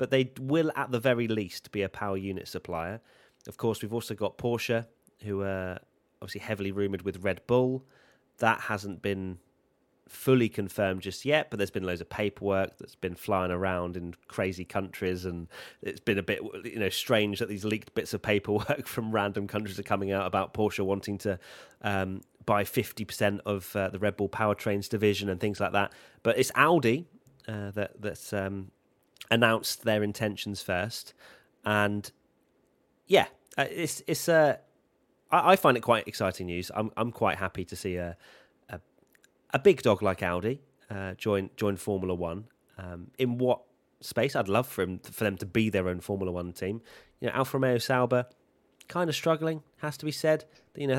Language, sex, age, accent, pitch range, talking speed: English, male, 30-49, British, 95-125 Hz, 185 wpm